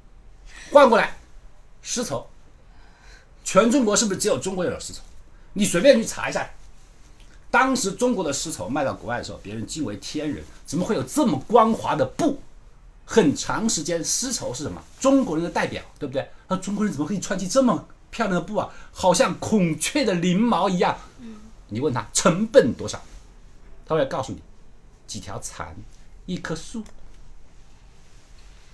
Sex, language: male, Chinese